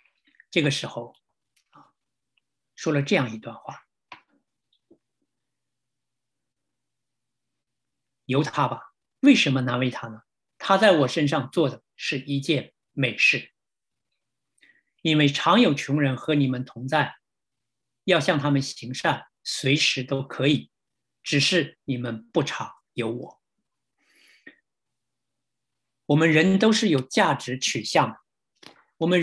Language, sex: English, male